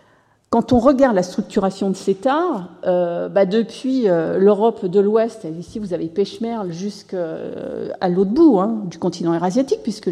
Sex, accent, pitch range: female, French, 170-225 Hz